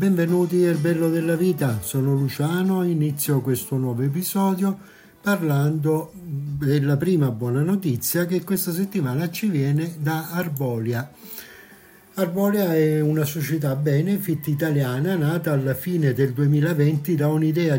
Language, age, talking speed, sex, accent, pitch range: Italian, 60-79, 120 wpm, male, native, 140-180 Hz